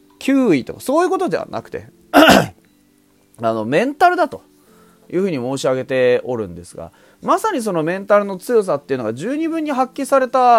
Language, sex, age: Japanese, male, 30-49